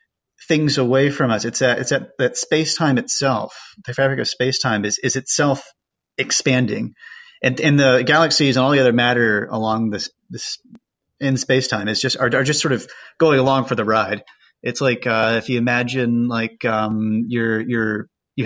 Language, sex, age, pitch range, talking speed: English, male, 30-49, 110-135 Hz, 200 wpm